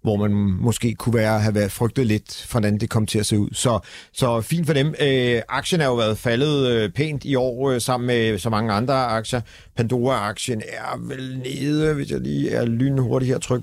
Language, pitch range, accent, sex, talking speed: Danish, 110-135 Hz, native, male, 210 wpm